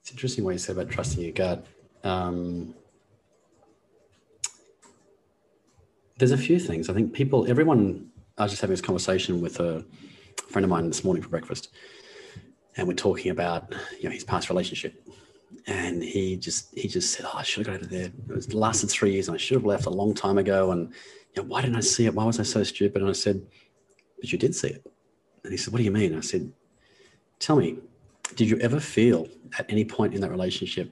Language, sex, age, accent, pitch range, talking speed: English, male, 30-49, Australian, 90-120 Hz, 215 wpm